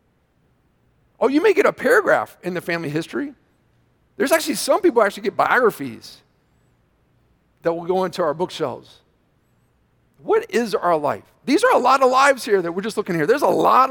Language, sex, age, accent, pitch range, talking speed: English, male, 40-59, American, 200-305 Hz, 180 wpm